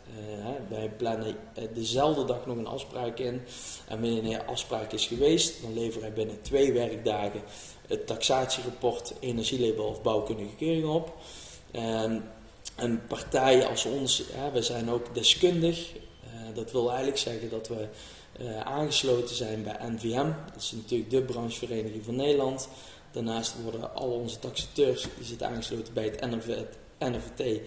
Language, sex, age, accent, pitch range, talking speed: Dutch, male, 20-39, Dutch, 115-135 Hz, 150 wpm